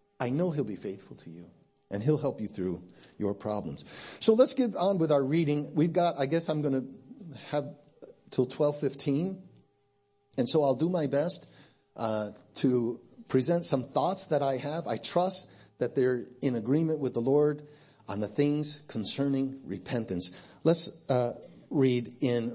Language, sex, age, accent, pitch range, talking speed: English, male, 50-69, American, 120-155 Hz, 170 wpm